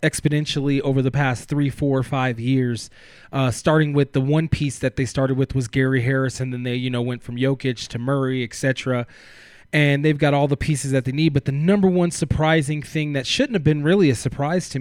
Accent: American